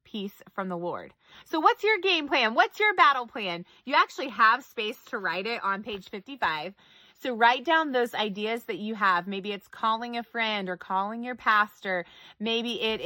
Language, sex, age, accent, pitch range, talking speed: English, female, 20-39, American, 200-270 Hz, 195 wpm